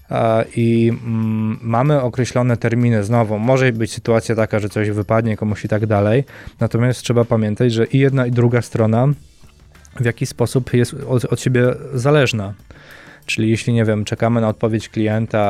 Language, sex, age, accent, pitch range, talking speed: Polish, male, 20-39, native, 110-120 Hz, 155 wpm